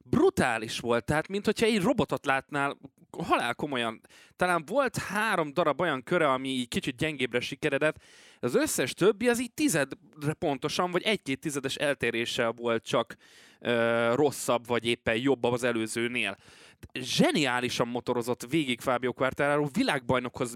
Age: 20-39